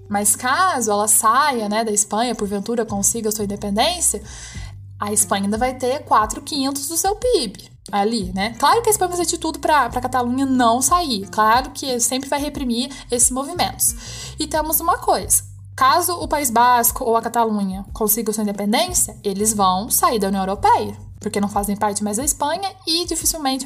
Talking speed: 185 wpm